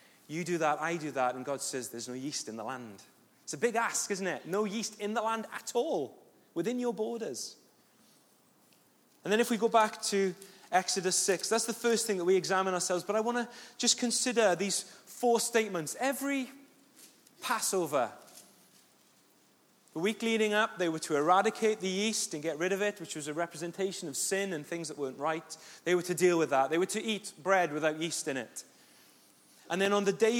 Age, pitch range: 30-49, 160-215 Hz